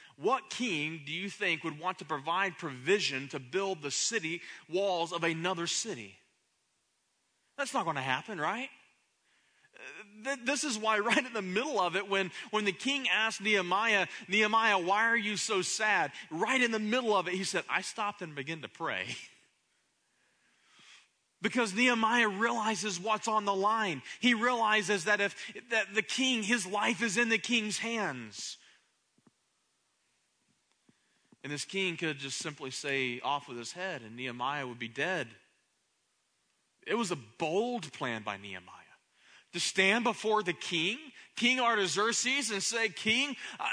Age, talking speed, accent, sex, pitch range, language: 30-49, 155 wpm, American, male, 170-230 Hz, English